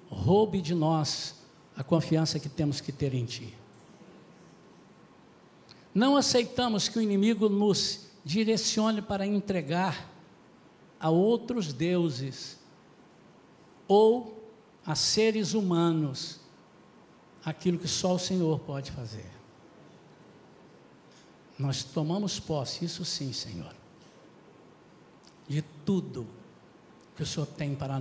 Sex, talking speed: male, 100 wpm